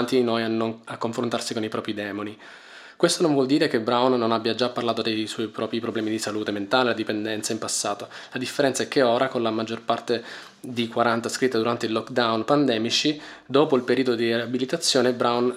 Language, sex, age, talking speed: Italian, male, 20-39, 195 wpm